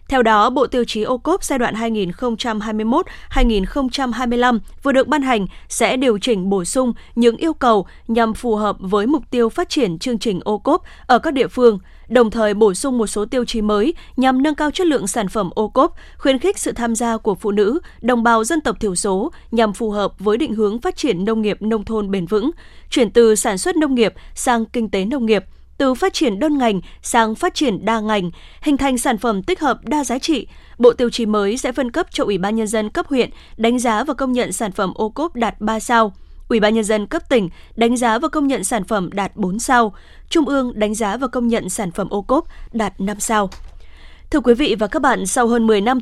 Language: Vietnamese